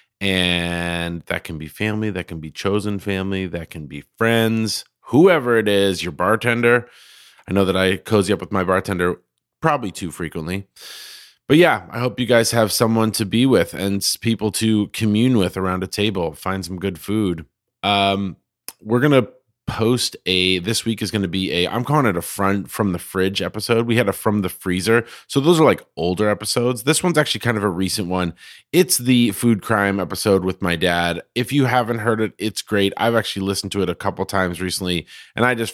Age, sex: 30-49, male